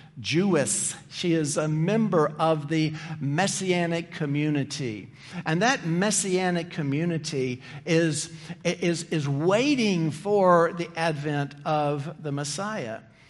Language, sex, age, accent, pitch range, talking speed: English, male, 50-69, American, 145-185 Hz, 95 wpm